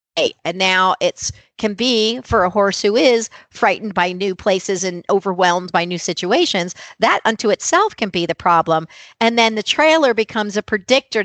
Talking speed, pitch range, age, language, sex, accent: 175 wpm, 180-215 Hz, 50-69, English, female, American